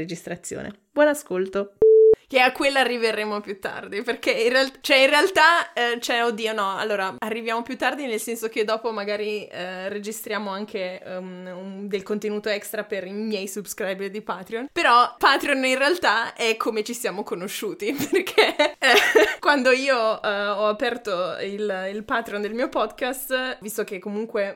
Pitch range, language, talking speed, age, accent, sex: 200-275 Hz, Italian, 165 wpm, 20-39, native, female